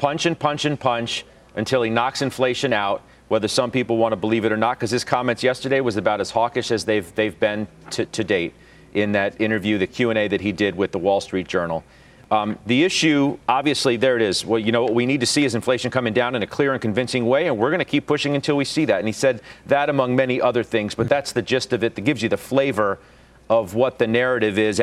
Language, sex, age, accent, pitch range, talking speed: English, male, 40-59, American, 110-135 Hz, 260 wpm